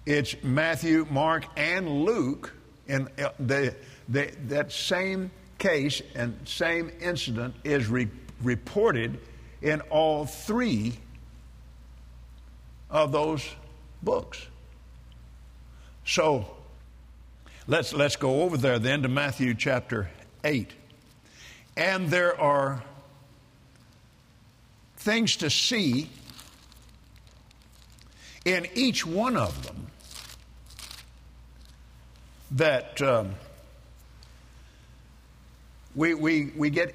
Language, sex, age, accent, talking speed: English, male, 60-79, American, 80 wpm